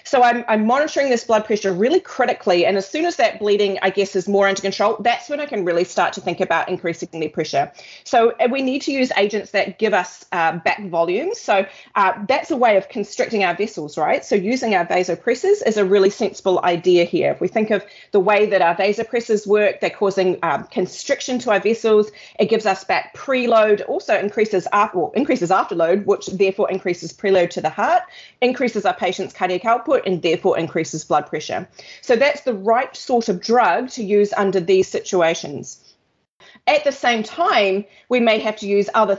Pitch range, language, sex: 180-225 Hz, English, female